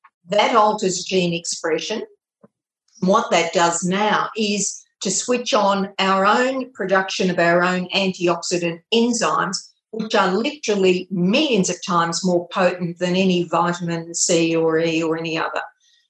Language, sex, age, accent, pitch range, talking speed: English, female, 50-69, Australian, 175-215 Hz, 140 wpm